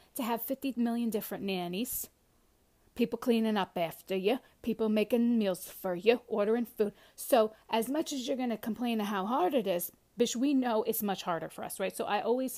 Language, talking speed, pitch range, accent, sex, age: English, 200 wpm, 195-275 Hz, American, female, 40-59